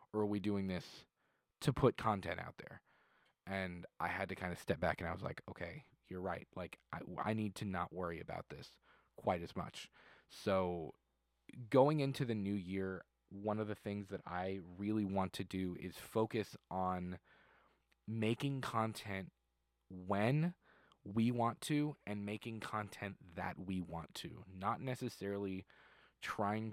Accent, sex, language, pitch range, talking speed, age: American, male, English, 95-115 Hz, 160 wpm, 20-39